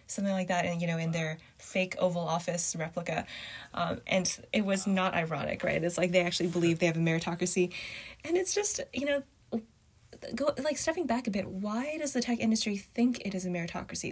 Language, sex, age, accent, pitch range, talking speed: English, female, 10-29, American, 165-200 Hz, 210 wpm